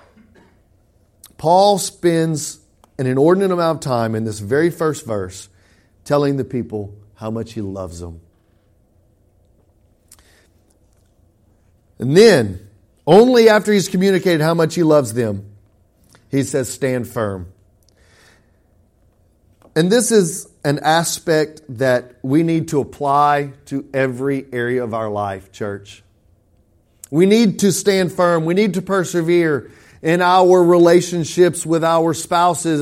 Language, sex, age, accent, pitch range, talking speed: English, male, 40-59, American, 120-190 Hz, 125 wpm